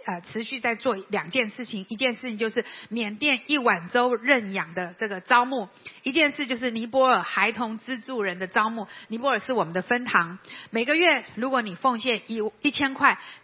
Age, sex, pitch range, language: 50-69, female, 205-255 Hz, Chinese